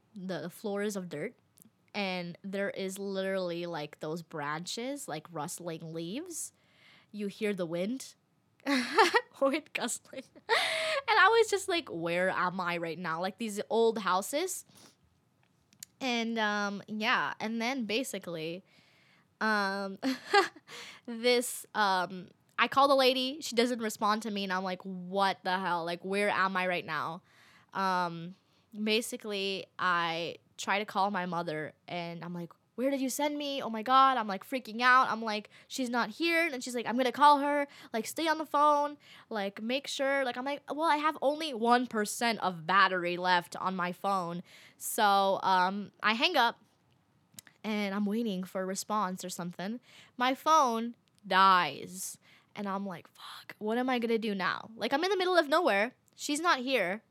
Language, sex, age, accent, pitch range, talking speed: English, female, 20-39, American, 185-255 Hz, 165 wpm